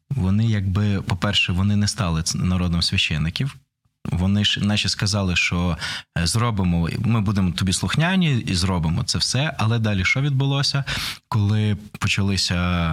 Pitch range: 90-115 Hz